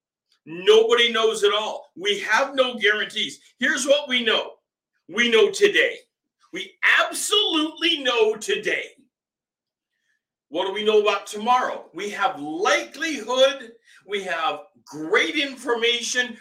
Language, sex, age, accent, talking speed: English, male, 50-69, American, 115 wpm